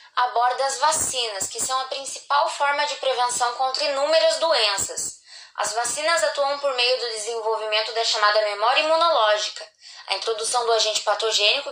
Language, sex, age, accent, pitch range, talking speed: Portuguese, female, 10-29, Brazilian, 230-285 Hz, 150 wpm